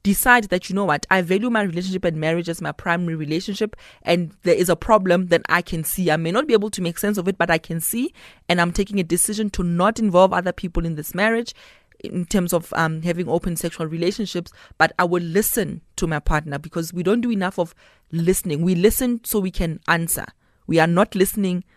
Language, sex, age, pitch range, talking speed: English, female, 20-39, 165-205 Hz, 230 wpm